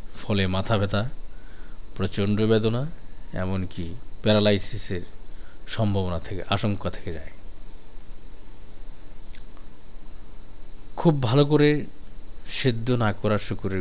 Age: 50-69